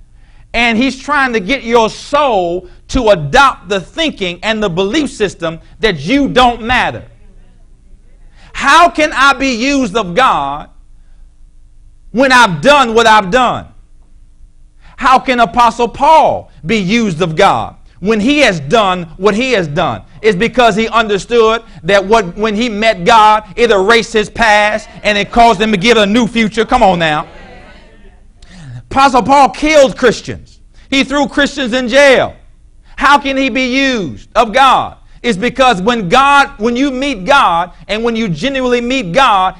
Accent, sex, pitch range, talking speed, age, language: American, male, 205-265 Hz, 155 wpm, 50-69, English